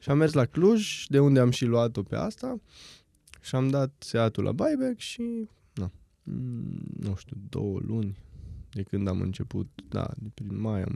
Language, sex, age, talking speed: Romanian, male, 20-39, 180 wpm